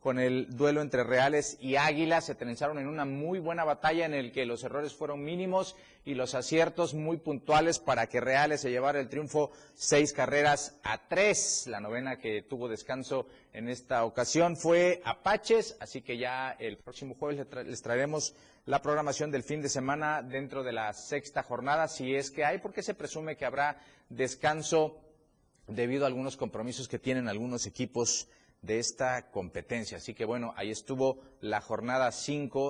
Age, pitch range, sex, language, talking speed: 40-59, 120-150 Hz, male, Spanish, 180 wpm